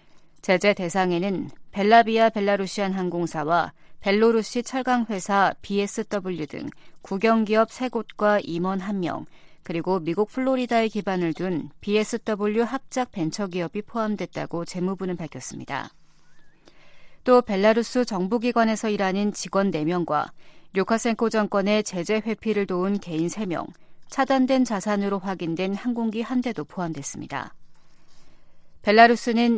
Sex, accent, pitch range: female, native, 185-230 Hz